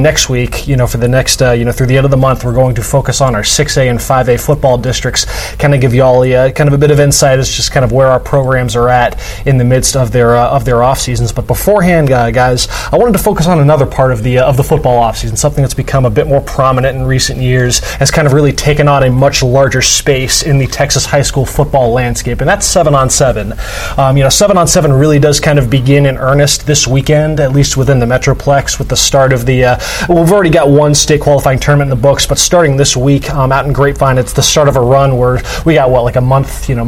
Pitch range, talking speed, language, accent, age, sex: 125-145 Hz, 275 wpm, English, American, 20-39, male